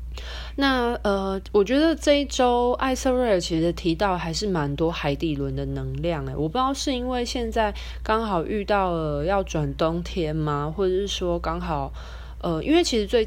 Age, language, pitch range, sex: 20-39, Chinese, 150-200 Hz, female